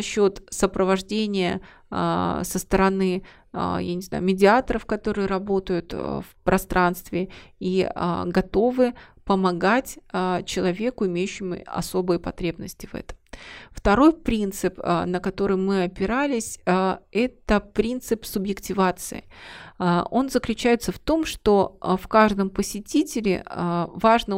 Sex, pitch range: female, 185-215 Hz